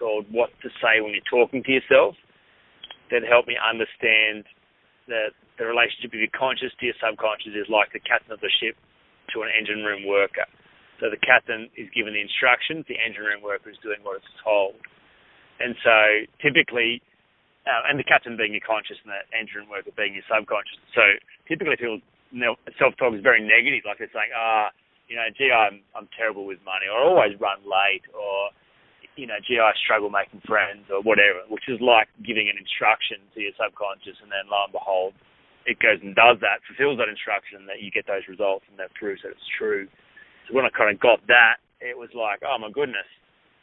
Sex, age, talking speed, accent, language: male, 30-49, 205 wpm, Australian, English